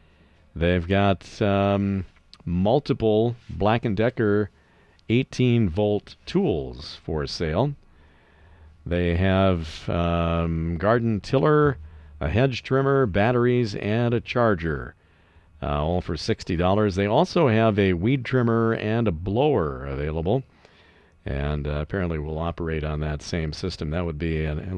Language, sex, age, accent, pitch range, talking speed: English, male, 50-69, American, 80-110 Hz, 120 wpm